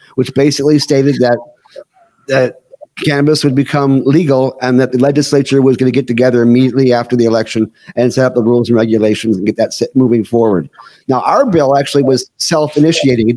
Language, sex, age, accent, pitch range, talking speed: English, male, 50-69, American, 125-155 Hz, 190 wpm